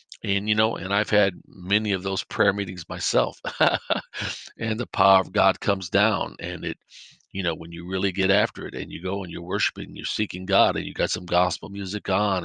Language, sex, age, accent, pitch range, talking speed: English, male, 50-69, American, 95-110 Hz, 215 wpm